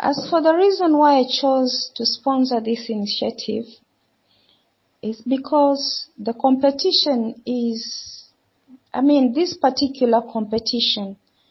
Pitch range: 210-265 Hz